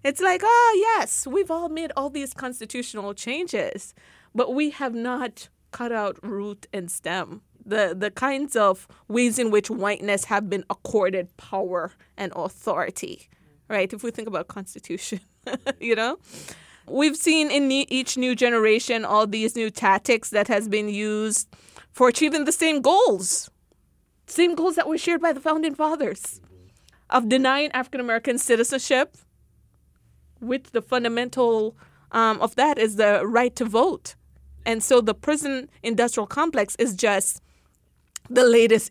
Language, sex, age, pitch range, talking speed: English, female, 20-39, 205-265 Hz, 150 wpm